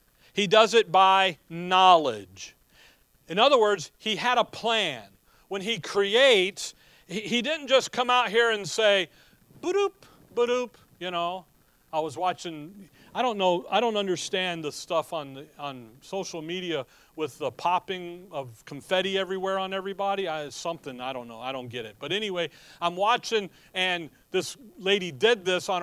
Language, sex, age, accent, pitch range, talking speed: English, male, 40-59, American, 170-225 Hz, 165 wpm